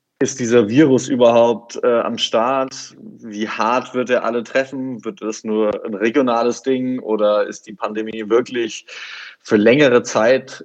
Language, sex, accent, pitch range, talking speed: German, male, German, 110-125 Hz, 150 wpm